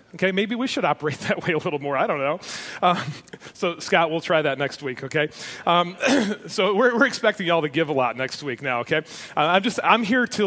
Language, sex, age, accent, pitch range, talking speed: English, male, 30-49, American, 170-225 Hz, 240 wpm